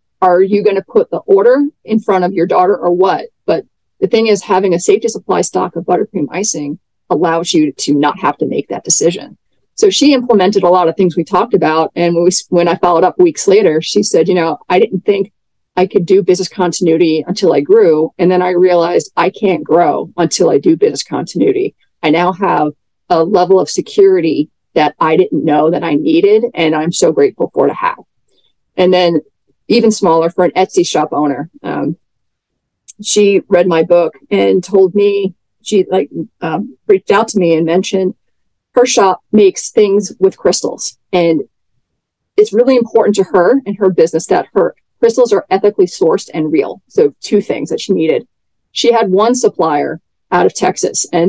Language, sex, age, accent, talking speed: English, female, 40-59, American, 195 wpm